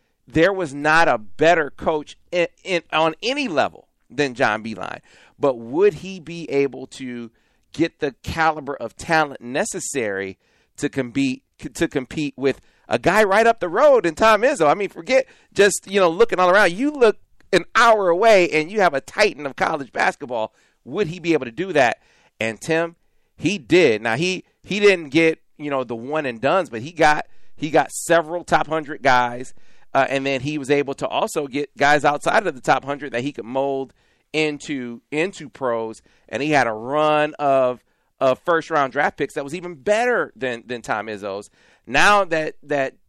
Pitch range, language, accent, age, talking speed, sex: 130-170 Hz, English, American, 40-59, 190 wpm, male